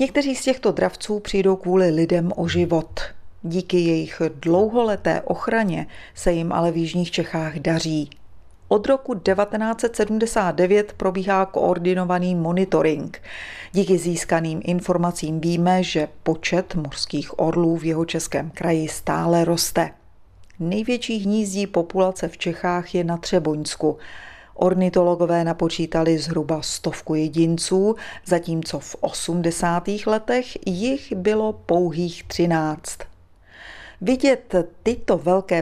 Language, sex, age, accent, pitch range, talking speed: Czech, female, 30-49, native, 160-190 Hz, 110 wpm